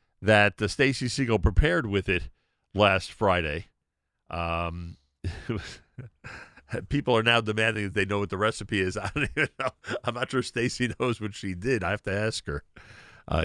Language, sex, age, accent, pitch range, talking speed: English, male, 50-69, American, 85-120 Hz, 180 wpm